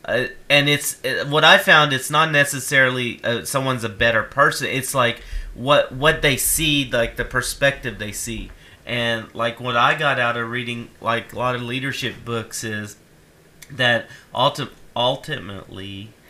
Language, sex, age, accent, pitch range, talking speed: English, male, 40-59, American, 110-130 Hz, 155 wpm